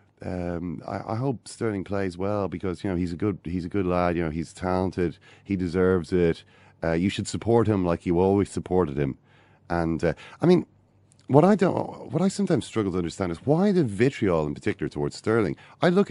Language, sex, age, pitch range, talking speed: English, male, 30-49, 85-120 Hz, 210 wpm